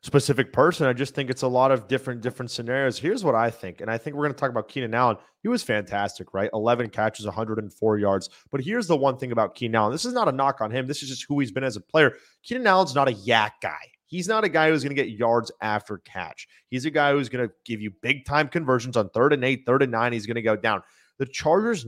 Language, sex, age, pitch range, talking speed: English, male, 30-49, 125-170 Hz, 275 wpm